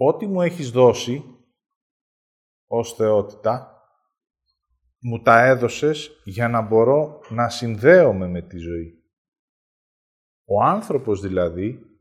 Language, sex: Greek, male